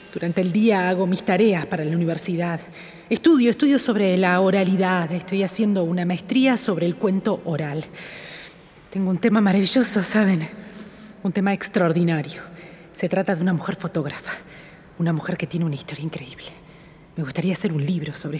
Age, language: 30-49, Spanish